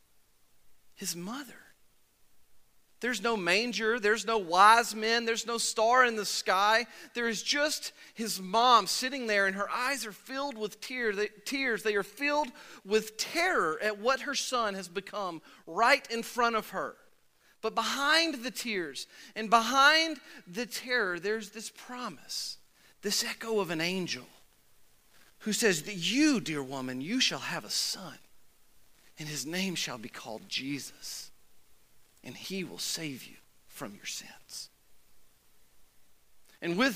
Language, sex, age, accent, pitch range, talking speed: English, male, 40-59, American, 195-245 Hz, 145 wpm